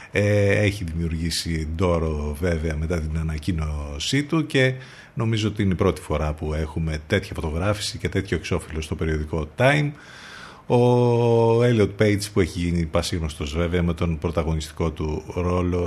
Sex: male